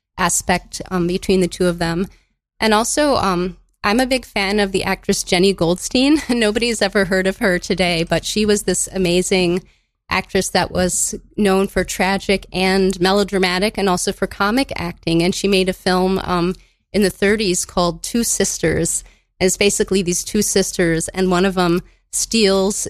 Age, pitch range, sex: 20-39, 180-210 Hz, female